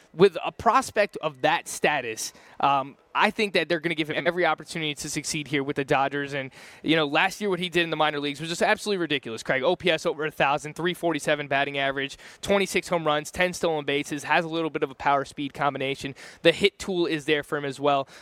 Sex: male